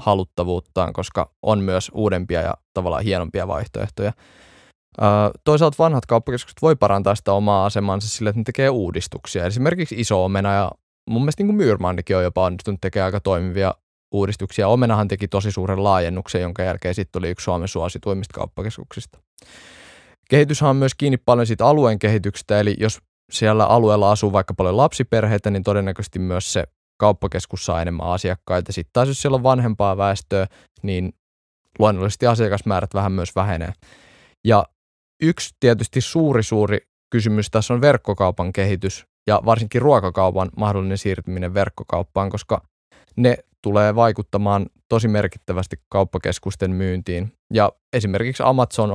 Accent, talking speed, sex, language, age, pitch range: native, 140 wpm, male, Finnish, 20-39, 95-110 Hz